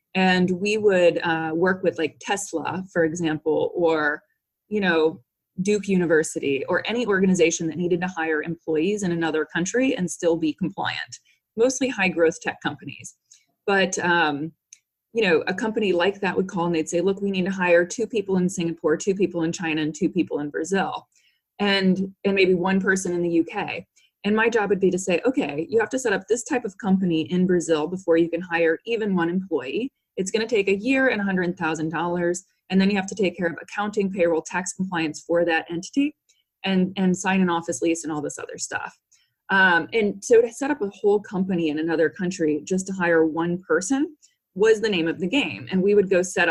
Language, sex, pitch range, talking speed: English, female, 165-200 Hz, 210 wpm